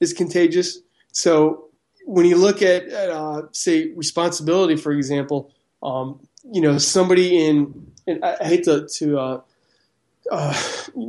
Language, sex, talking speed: English, male, 140 wpm